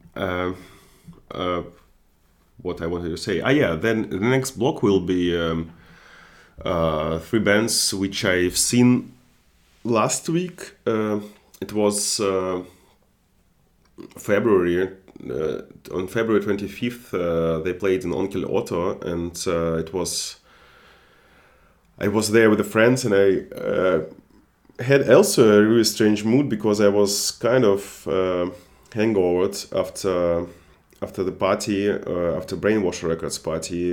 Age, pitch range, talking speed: 30-49, 85-110 Hz, 135 wpm